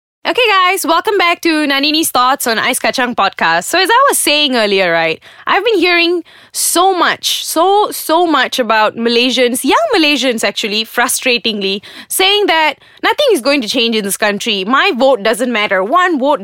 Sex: female